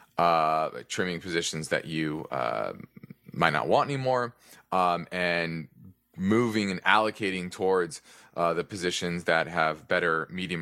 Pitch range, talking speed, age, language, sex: 85-105 Hz, 130 wpm, 20-39, English, male